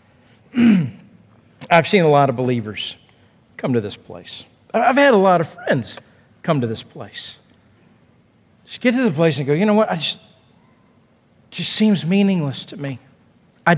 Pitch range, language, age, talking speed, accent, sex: 150-225 Hz, English, 50-69, 165 wpm, American, male